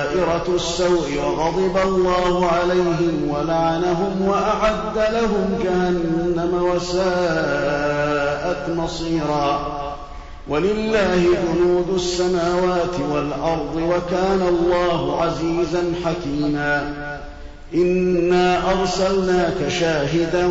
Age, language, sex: 50-69, Arabic, male